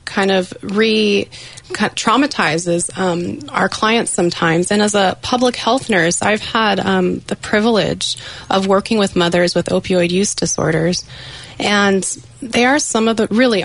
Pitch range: 180-210 Hz